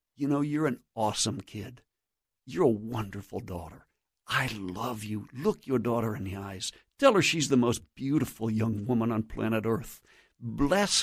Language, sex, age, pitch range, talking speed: English, male, 60-79, 110-140 Hz, 170 wpm